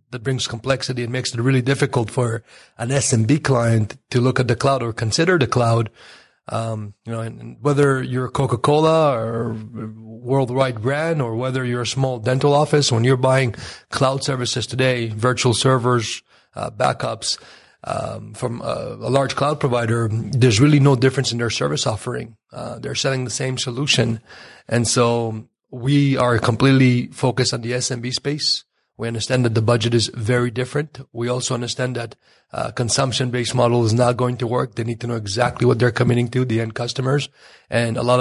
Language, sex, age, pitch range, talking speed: English, male, 30-49, 120-130 Hz, 180 wpm